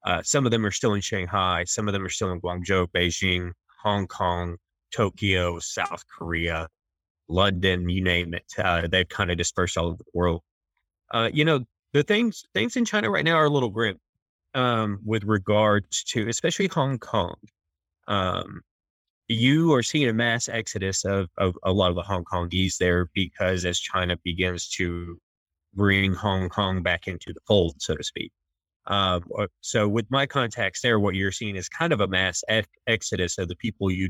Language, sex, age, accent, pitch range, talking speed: English, male, 20-39, American, 90-115 Hz, 185 wpm